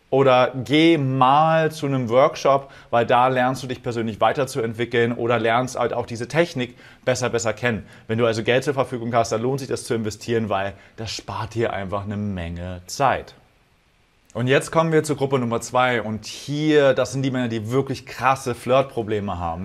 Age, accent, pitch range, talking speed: 30-49, German, 115-140 Hz, 190 wpm